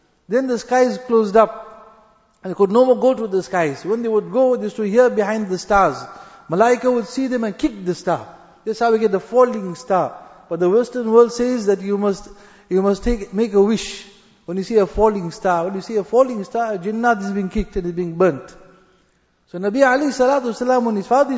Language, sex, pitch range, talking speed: English, male, 195-245 Hz, 235 wpm